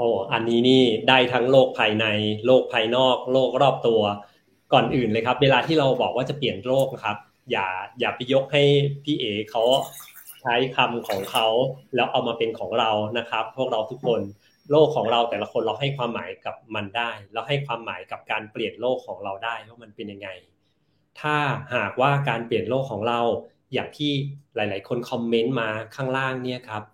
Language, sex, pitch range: English, male, 110-135 Hz